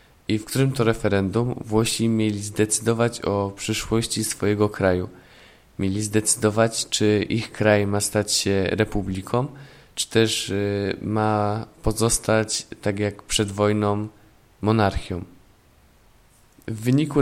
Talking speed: 110 wpm